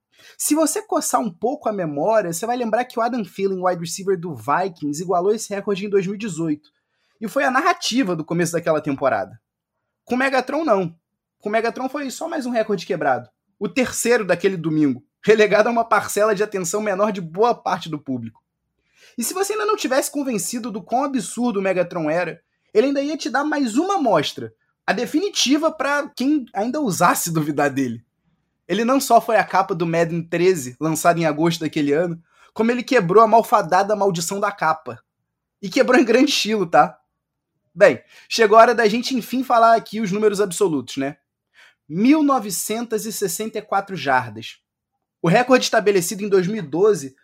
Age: 20-39